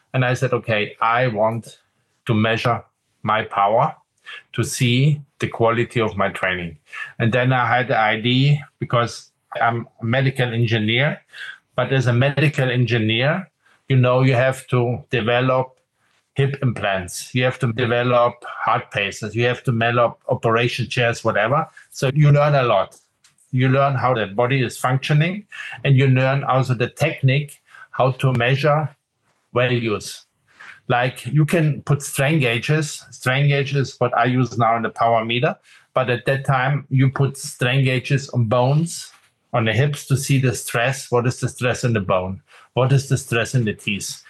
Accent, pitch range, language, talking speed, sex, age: German, 120-140 Hz, English, 165 wpm, male, 50-69